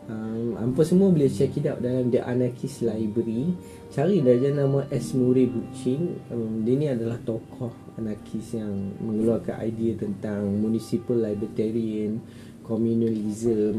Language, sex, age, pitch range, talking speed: Malay, male, 20-39, 110-135 Hz, 125 wpm